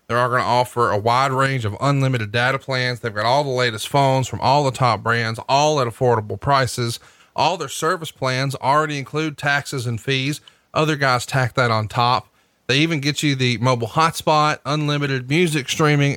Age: 30-49